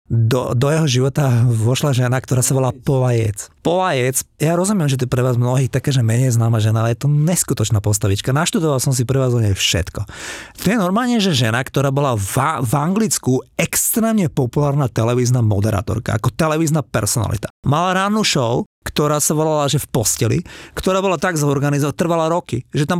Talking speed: 185 wpm